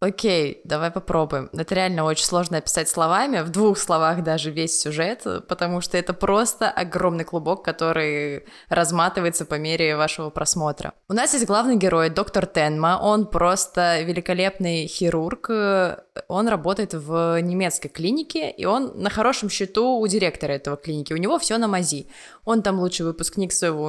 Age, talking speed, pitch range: 20-39, 155 wpm, 165-210 Hz